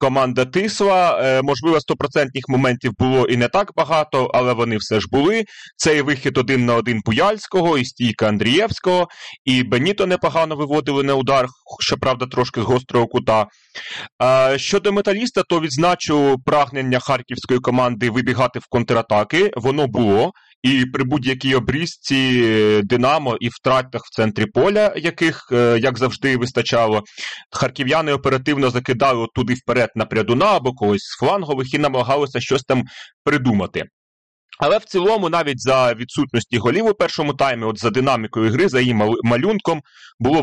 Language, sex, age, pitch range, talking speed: Ukrainian, male, 30-49, 120-160 Hz, 140 wpm